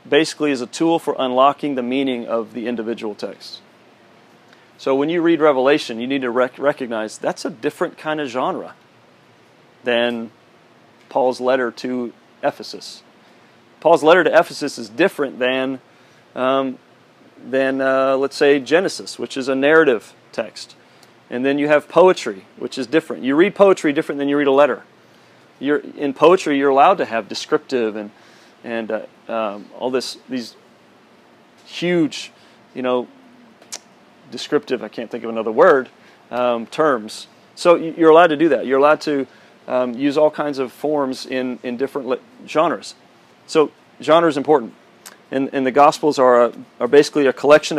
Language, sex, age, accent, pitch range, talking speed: English, male, 40-59, American, 125-150 Hz, 160 wpm